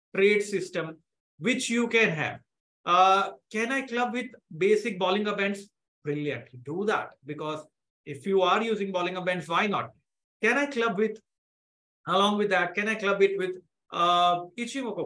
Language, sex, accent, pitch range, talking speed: English, male, Indian, 175-225 Hz, 160 wpm